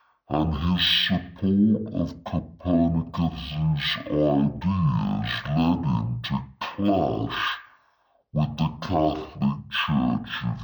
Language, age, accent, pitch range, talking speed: English, 60-79, American, 70-95 Hz, 90 wpm